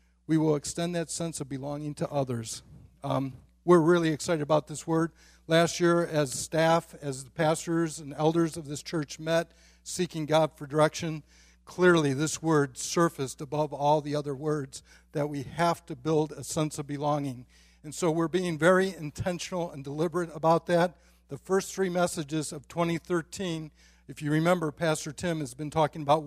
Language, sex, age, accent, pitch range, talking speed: English, male, 50-69, American, 145-170 Hz, 175 wpm